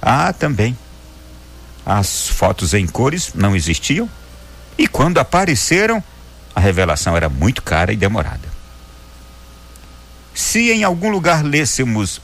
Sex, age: male, 60-79